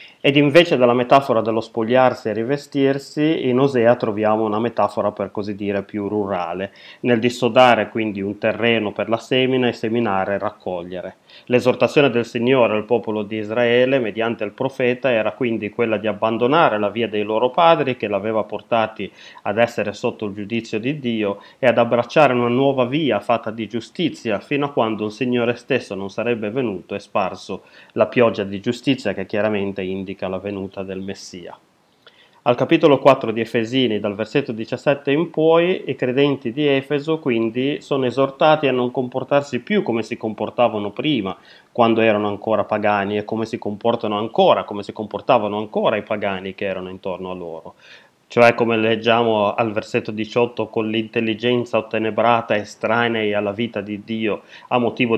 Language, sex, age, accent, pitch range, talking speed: Italian, male, 30-49, native, 105-125 Hz, 165 wpm